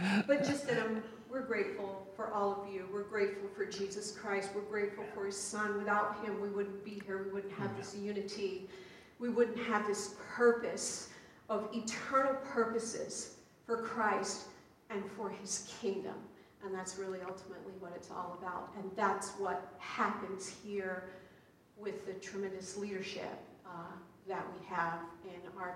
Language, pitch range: English, 185-210 Hz